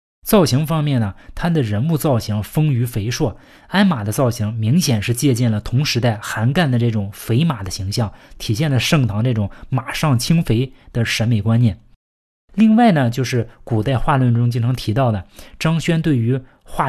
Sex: male